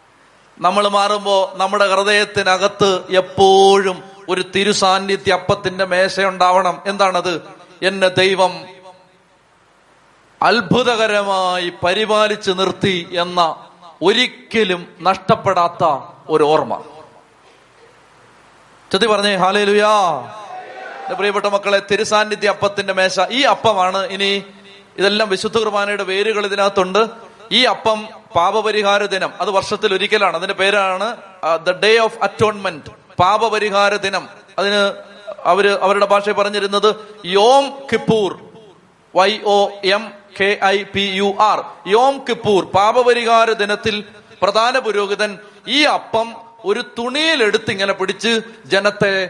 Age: 30-49